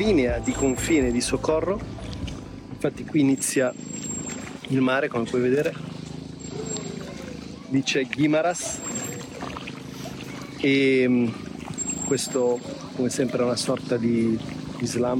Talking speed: 100 wpm